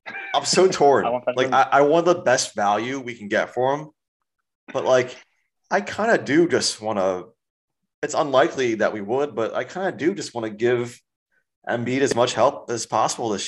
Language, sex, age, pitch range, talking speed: English, male, 30-49, 100-140 Hz, 200 wpm